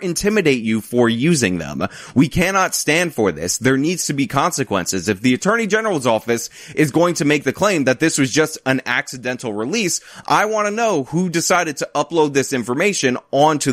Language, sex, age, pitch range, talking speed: English, male, 20-39, 125-175 Hz, 190 wpm